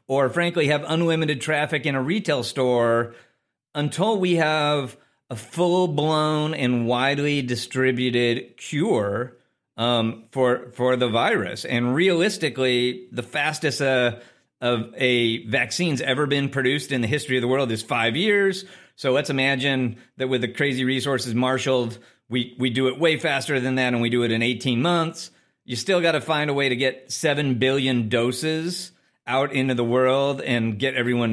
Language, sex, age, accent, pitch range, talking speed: English, male, 40-59, American, 120-150 Hz, 165 wpm